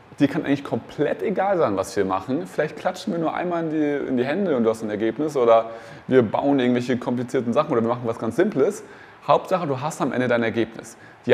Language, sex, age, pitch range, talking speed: German, male, 30-49, 105-140 Hz, 230 wpm